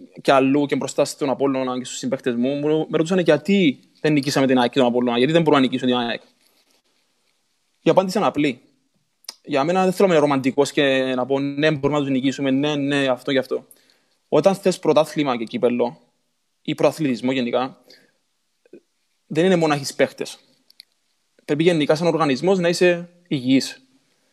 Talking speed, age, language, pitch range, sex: 180 wpm, 20-39, Greek, 140-180 Hz, male